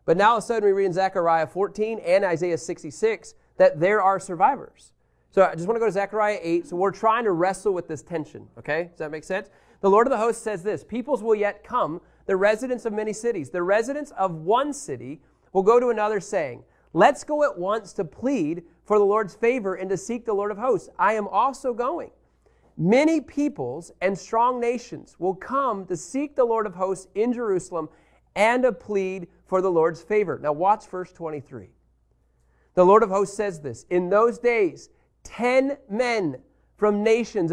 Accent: American